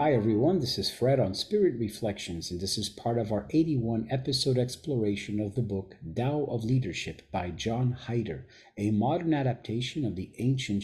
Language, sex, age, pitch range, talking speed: English, male, 40-59, 110-140 Hz, 175 wpm